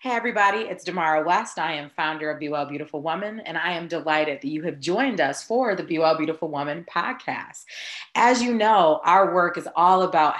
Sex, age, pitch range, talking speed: female, 30-49, 150-195 Hz, 215 wpm